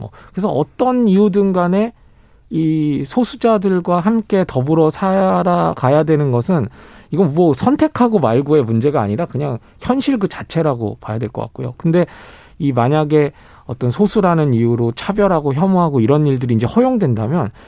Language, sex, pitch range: Korean, male, 125-195 Hz